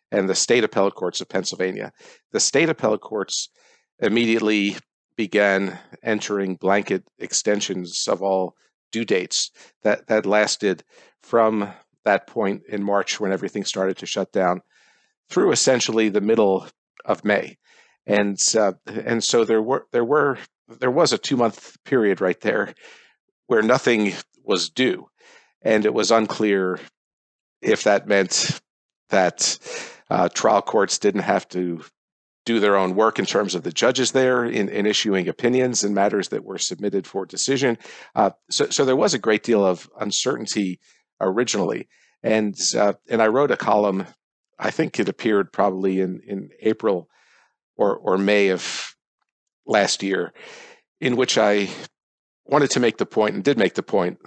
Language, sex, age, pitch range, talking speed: English, male, 50-69, 95-110 Hz, 155 wpm